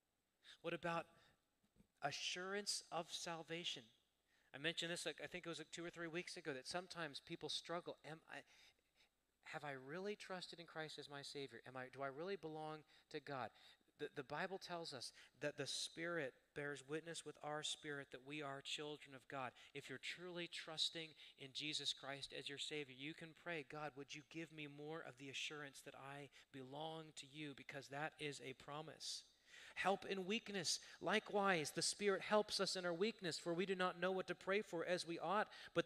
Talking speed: 195 wpm